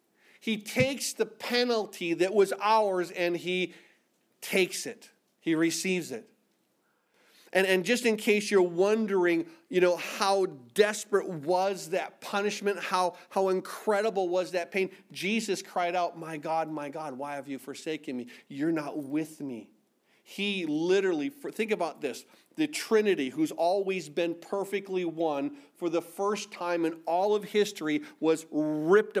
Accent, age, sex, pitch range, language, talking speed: American, 40-59, male, 170-210 Hz, English, 150 wpm